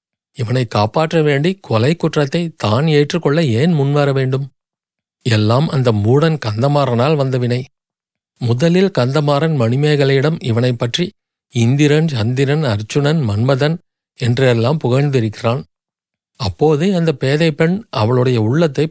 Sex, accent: male, native